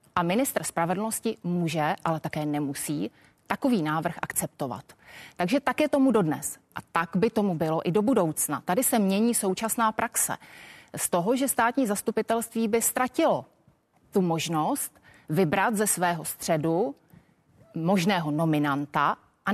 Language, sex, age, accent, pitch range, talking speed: Czech, female, 30-49, native, 165-230 Hz, 135 wpm